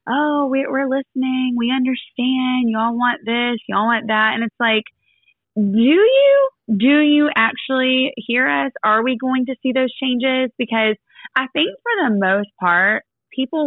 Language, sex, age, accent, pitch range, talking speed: English, female, 20-39, American, 205-265 Hz, 155 wpm